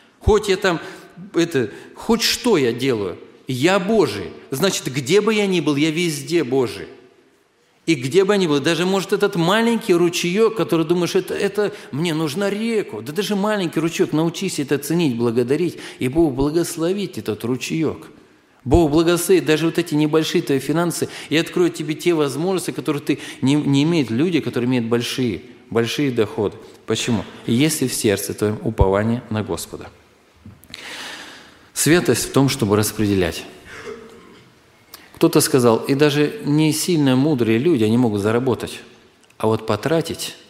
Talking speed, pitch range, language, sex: 150 wpm, 115-170 Hz, Russian, male